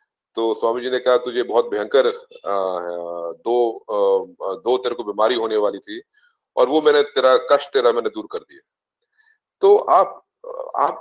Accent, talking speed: native, 160 wpm